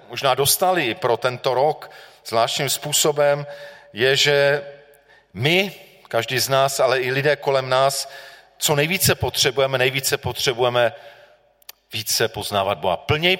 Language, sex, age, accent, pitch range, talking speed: Czech, male, 40-59, native, 115-145 Hz, 120 wpm